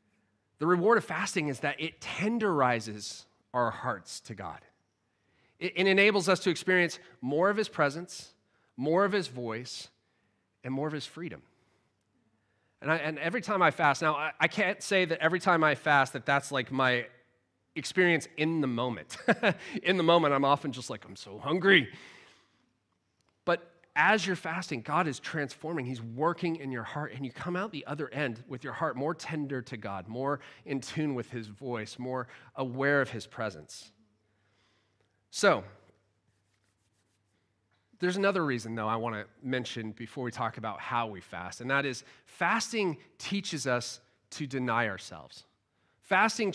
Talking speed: 160 wpm